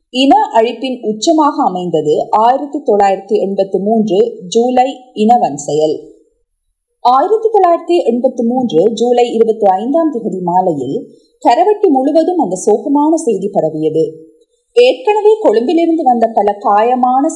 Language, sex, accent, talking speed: Tamil, female, native, 70 wpm